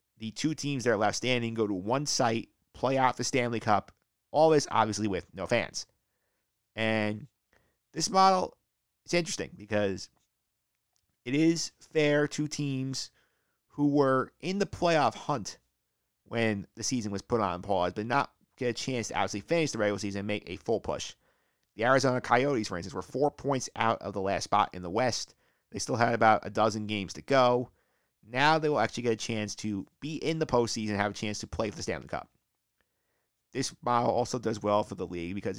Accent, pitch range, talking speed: American, 105-130 Hz, 200 wpm